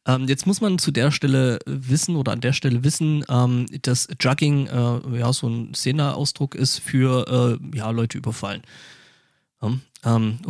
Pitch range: 125-150 Hz